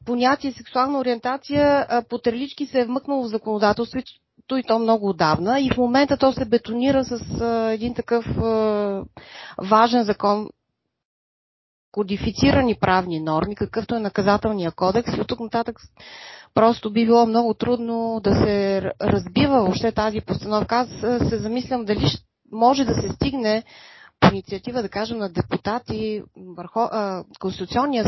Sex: female